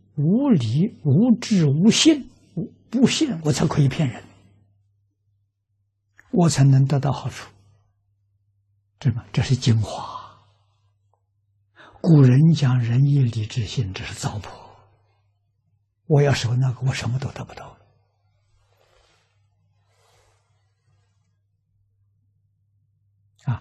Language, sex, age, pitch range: Chinese, male, 60-79, 100-130 Hz